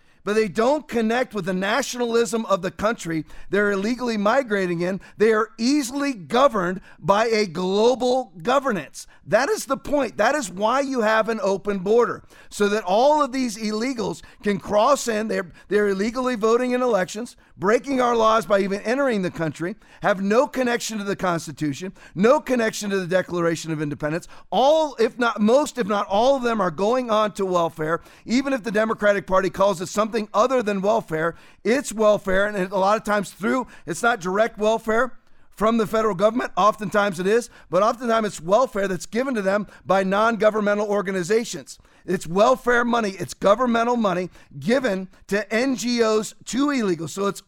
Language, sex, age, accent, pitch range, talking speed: English, male, 40-59, American, 195-235 Hz, 175 wpm